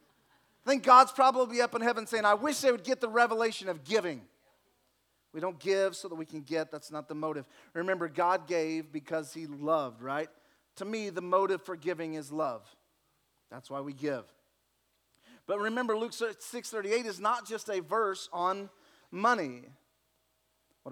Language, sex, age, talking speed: English, male, 40-59, 170 wpm